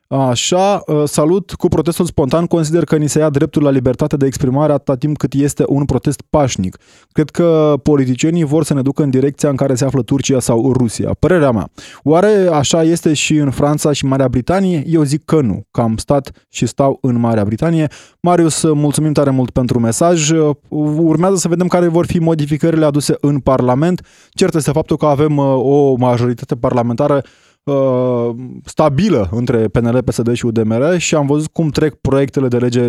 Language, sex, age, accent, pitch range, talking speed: Romanian, male, 20-39, native, 125-155 Hz, 180 wpm